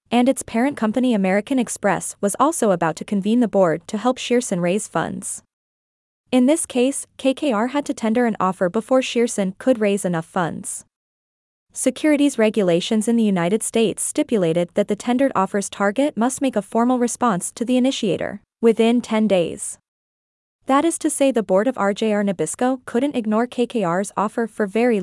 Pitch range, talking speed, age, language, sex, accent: 200-255 Hz, 170 wpm, 20-39, English, female, American